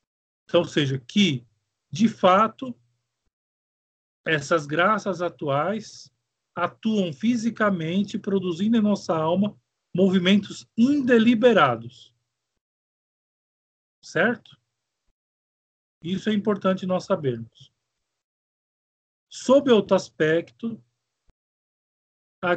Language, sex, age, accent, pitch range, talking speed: Portuguese, male, 40-59, Brazilian, 135-220 Hz, 70 wpm